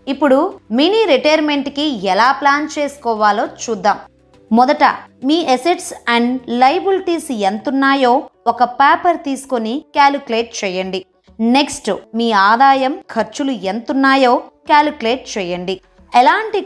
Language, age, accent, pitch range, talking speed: Telugu, 20-39, native, 230-285 Hz, 95 wpm